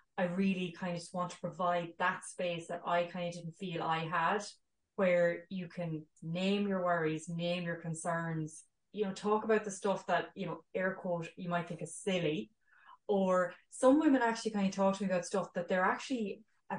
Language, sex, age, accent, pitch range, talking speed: English, female, 20-39, Irish, 170-200 Hz, 205 wpm